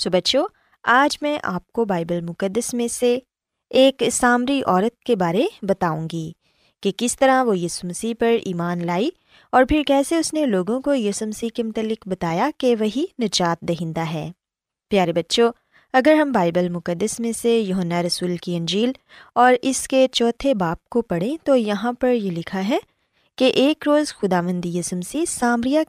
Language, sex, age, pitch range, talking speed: Urdu, female, 20-39, 180-270 Hz, 170 wpm